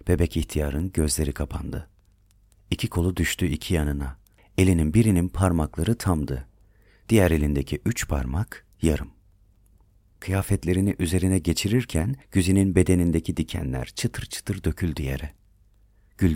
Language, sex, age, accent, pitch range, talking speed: Turkish, male, 40-59, native, 80-100 Hz, 105 wpm